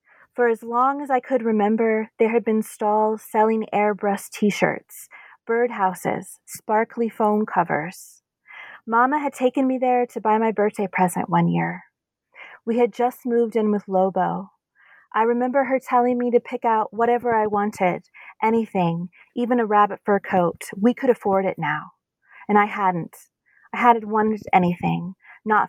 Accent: American